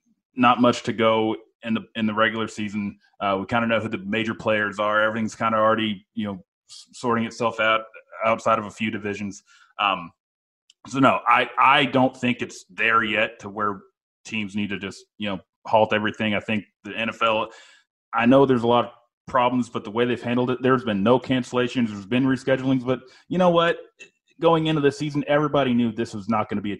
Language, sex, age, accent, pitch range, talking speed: English, male, 30-49, American, 105-125 Hz, 215 wpm